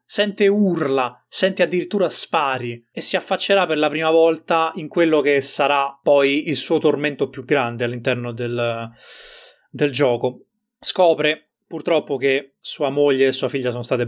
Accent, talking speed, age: native, 155 wpm, 20-39